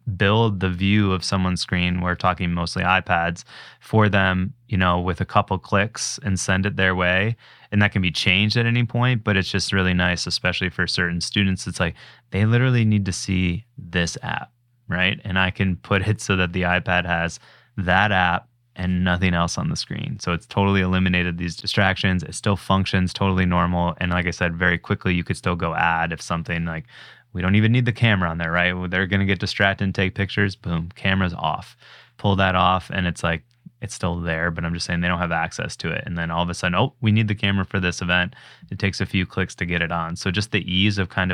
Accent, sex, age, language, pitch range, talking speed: American, male, 20-39, English, 90-105 Hz, 235 wpm